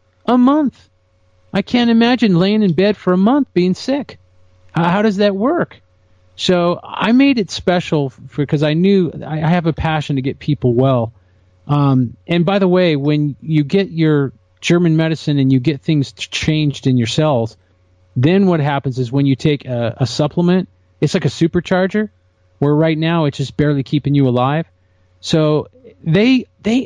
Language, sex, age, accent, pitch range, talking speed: English, male, 40-59, American, 120-185 Hz, 180 wpm